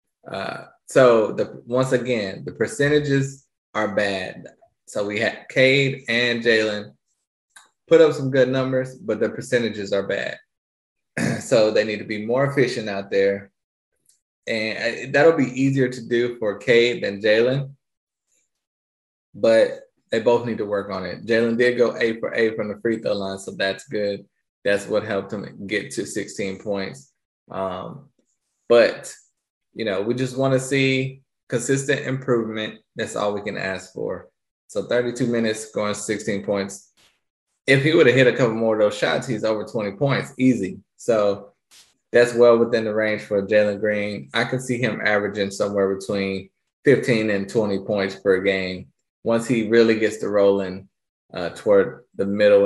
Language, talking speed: English, 165 wpm